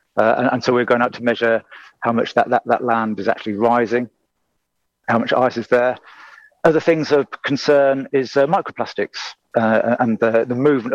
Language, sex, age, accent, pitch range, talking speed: English, male, 40-59, British, 115-135 Hz, 190 wpm